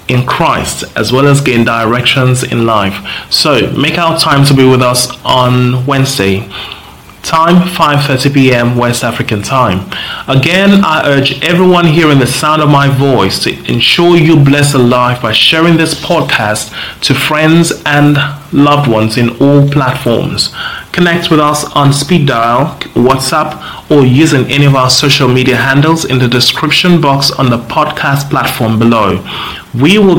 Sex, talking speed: male, 160 wpm